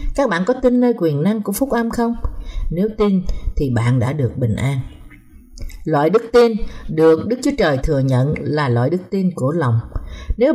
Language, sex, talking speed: Vietnamese, female, 200 wpm